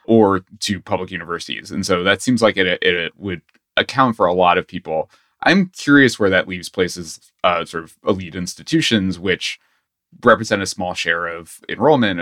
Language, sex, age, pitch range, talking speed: English, male, 20-39, 85-115 Hz, 180 wpm